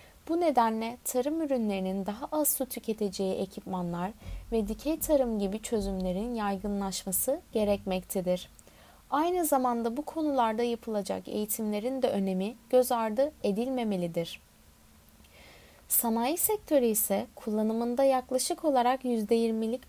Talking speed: 105 wpm